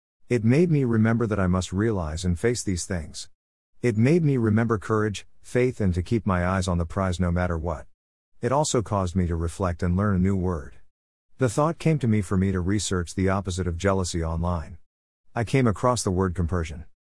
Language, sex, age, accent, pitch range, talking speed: English, male, 50-69, American, 85-115 Hz, 210 wpm